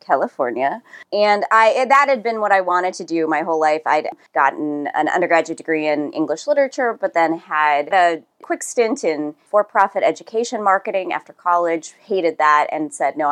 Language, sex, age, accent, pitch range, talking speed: English, female, 20-39, American, 150-195 Hz, 175 wpm